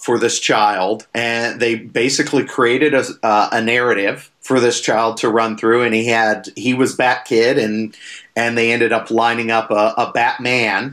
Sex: male